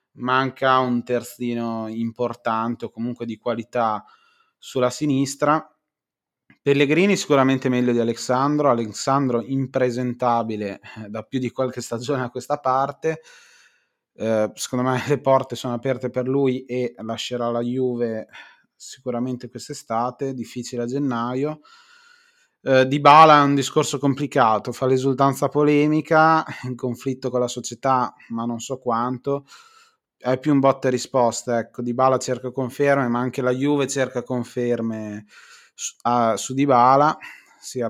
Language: Italian